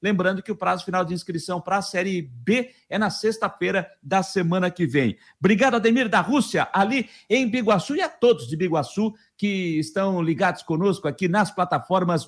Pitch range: 180-215 Hz